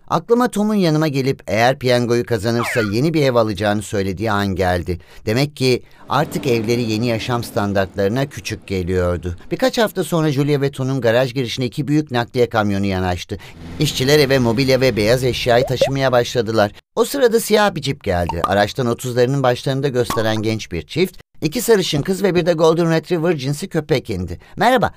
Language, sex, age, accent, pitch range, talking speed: Turkish, male, 50-69, native, 110-155 Hz, 165 wpm